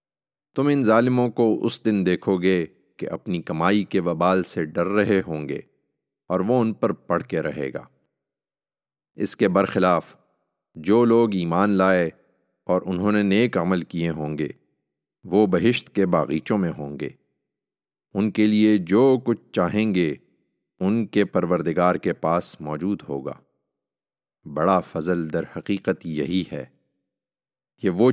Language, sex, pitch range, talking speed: English, male, 90-110 Hz, 145 wpm